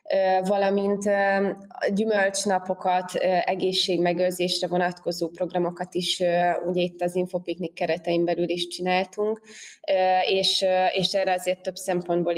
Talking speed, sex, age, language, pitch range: 90 wpm, female, 20-39, Hungarian, 175-195 Hz